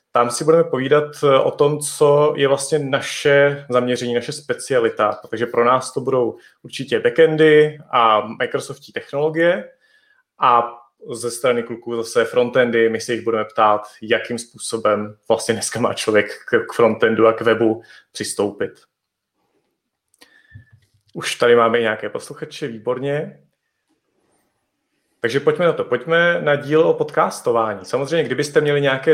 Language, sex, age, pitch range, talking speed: Czech, male, 30-49, 115-155 Hz, 135 wpm